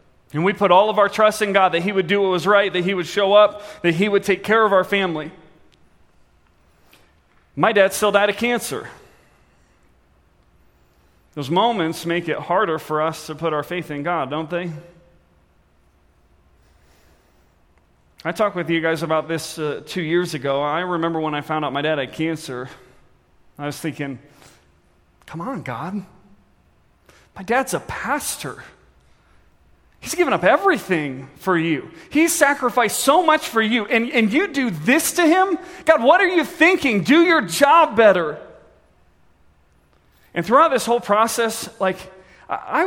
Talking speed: 160 wpm